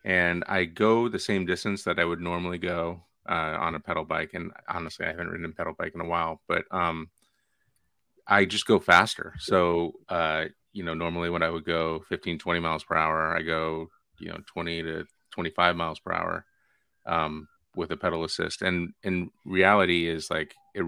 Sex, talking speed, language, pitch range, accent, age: male, 195 wpm, English, 80-90 Hz, American, 30-49